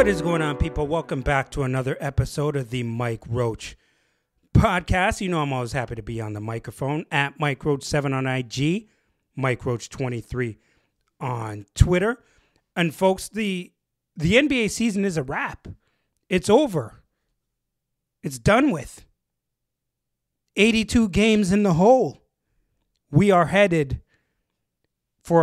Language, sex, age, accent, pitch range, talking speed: English, male, 30-49, American, 125-170 Hz, 135 wpm